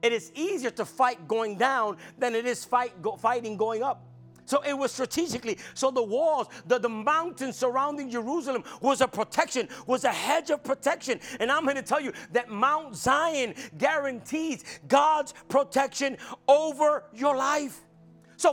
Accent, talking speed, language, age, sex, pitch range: American, 165 wpm, English, 40-59, male, 245-305 Hz